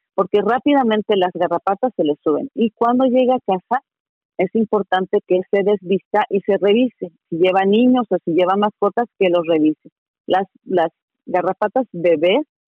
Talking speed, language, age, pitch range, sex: 160 wpm, Spanish, 40-59, 175-215 Hz, female